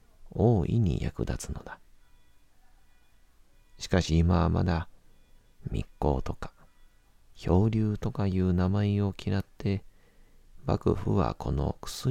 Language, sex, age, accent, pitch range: Japanese, male, 40-59, native, 80-100 Hz